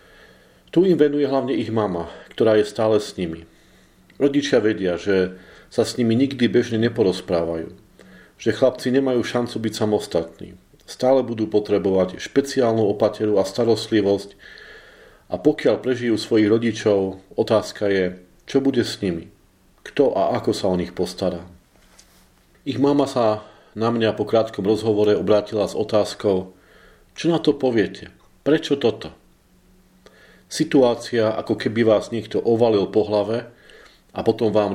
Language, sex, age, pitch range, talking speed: Slovak, male, 40-59, 100-120 Hz, 135 wpm